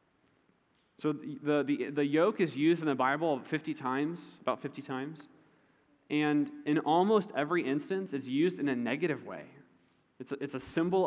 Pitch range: 135-170 Hz